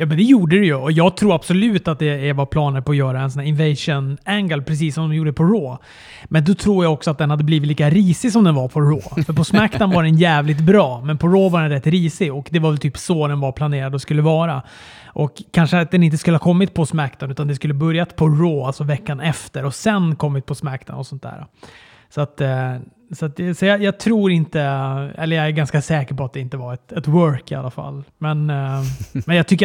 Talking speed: 265 wpm